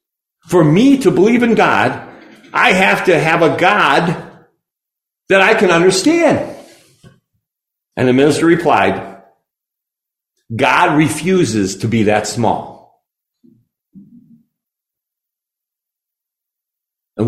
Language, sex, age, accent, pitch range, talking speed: English, male, 50-69, American, 115-180 Hz, 95 wpm